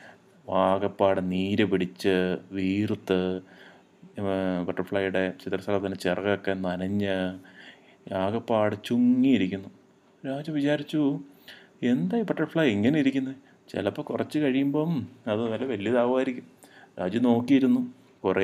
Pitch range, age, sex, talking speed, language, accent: 100-135 Hz, 30-49, male, 40 wpm, Malayalam, native